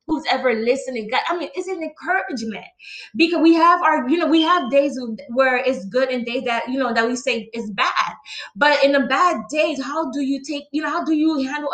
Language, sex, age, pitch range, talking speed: English, female, 20-39, 250-310 Hz, 230 wpm